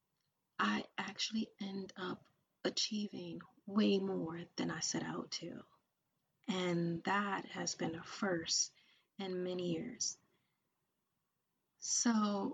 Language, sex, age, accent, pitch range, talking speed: English, female, 30-49, American, 180-225 Hz, 105 wpm